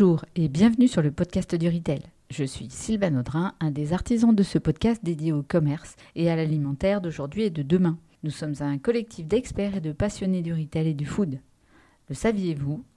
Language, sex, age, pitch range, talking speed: French, female, 40-59, 155-200 Hz, 200 wpm